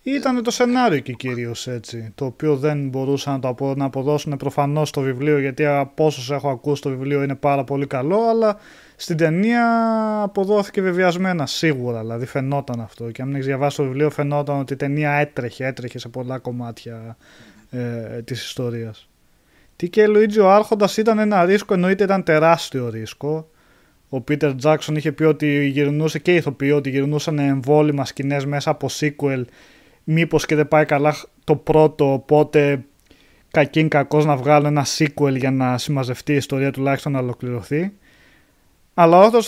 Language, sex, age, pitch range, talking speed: Greek, male, 20-39, 135-185 Hz, 165 wpm